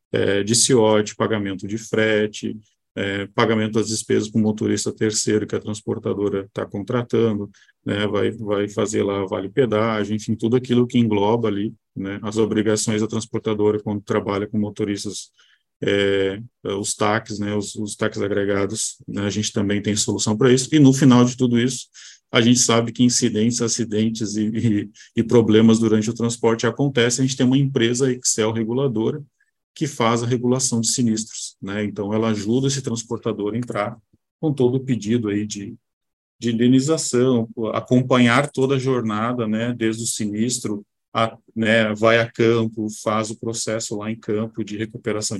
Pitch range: 105-120 Hz